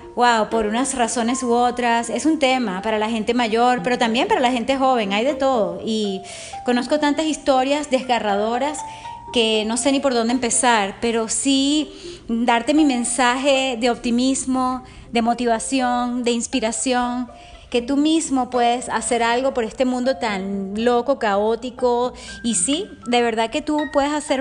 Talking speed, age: 160 wpm, 30-49